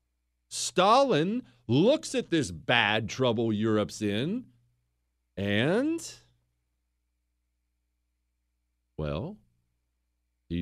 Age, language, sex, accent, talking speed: 40-59, English, male, American, 60 wpm